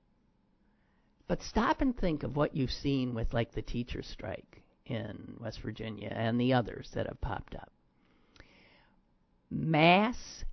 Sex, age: male, 50-69